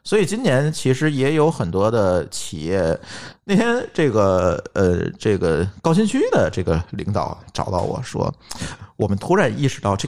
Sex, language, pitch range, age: male, Chinese, 110-175 Hz, 50-69